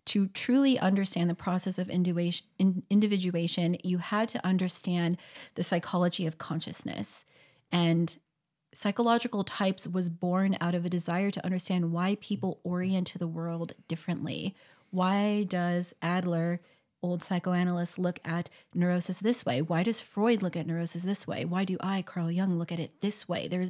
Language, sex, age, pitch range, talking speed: English, female, 30-49, 175-195 Hz, 155 wpm